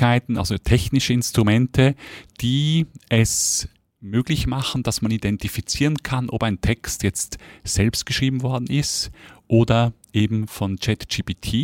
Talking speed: 120 wpm